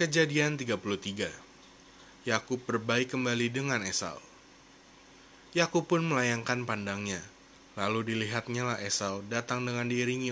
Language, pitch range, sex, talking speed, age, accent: Indonesian, 105-130 Hz, male, 100 wpm, 20-39, native